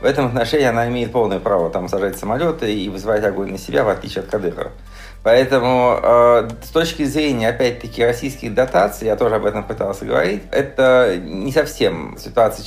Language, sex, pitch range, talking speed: Russian, male, 110-130 Hz, 175 wpm